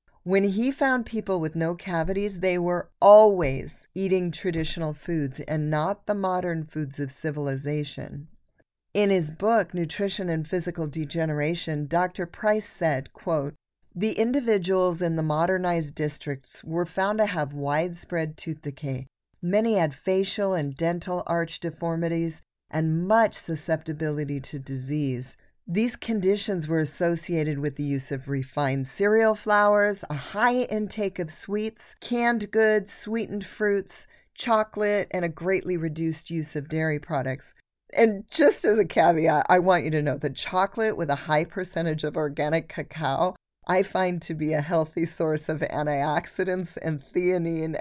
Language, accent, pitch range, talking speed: English, American, 150-195 Hz, 145 wpm